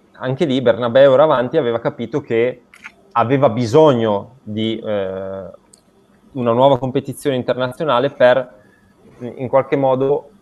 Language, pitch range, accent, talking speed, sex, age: Italian, 105-150 Hz, native, 115 wpm, male, 20-39